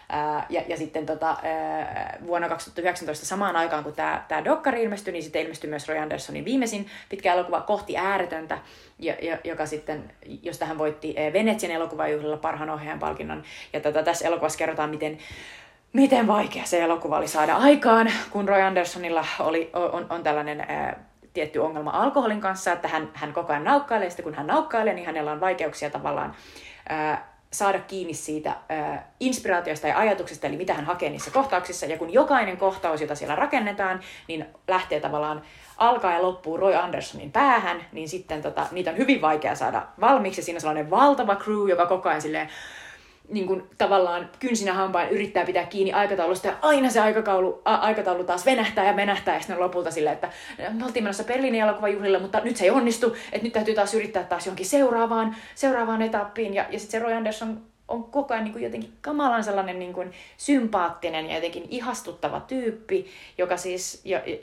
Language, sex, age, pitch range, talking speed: Finnish, female, 30-49, 160-220 Hz, 170 wpm